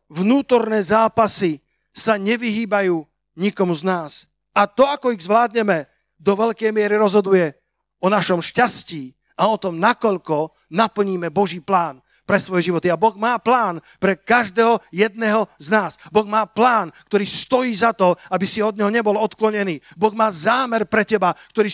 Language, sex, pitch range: Slovak, male, 160-225 Hz